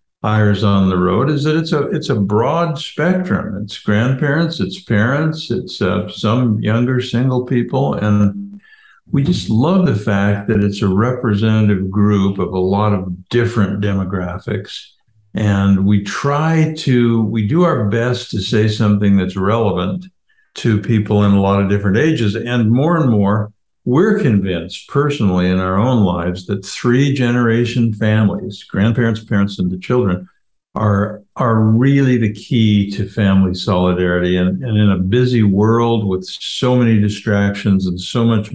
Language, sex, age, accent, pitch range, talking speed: English, male, 60-79, American, 100-120 Hz, 155 wpm